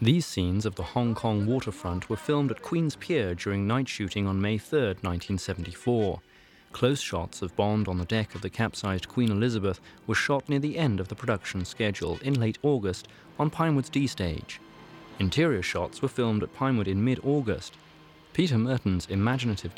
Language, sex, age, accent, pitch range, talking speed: English, male, 30-49, British, 95-130 Hz, 175 wpm